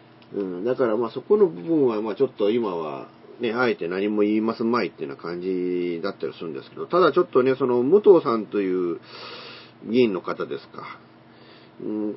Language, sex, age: Japanese, male, 40-59